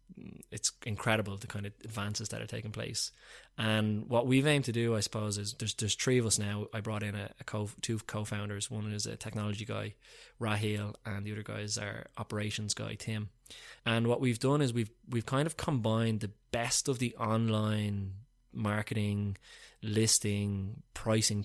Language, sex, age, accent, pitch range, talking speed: English, male, 20-39, Irish, 105-115 Hz, 185 wpm